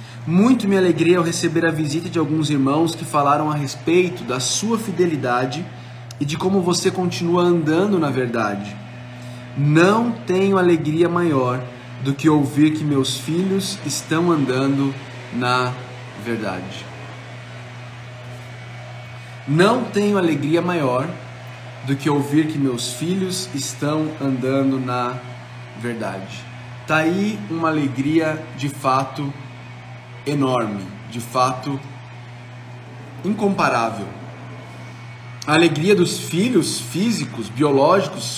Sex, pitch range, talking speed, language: male, 125-160 Hz, 110 wpm, Portuguese